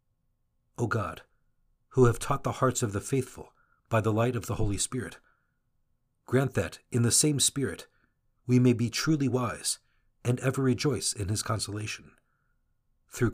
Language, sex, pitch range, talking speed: English, male, 105-130 Hz, 155 wpm